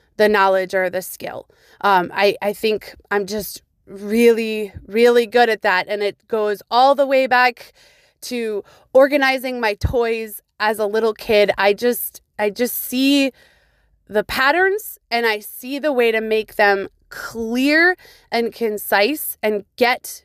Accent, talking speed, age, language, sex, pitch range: American, 150 wpm, 20-39, English, female, 210-255 Hz